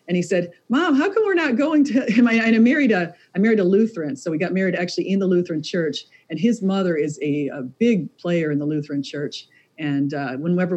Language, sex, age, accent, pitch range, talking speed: English, female, 40-59, American, 155-185 Hz, 235 wpm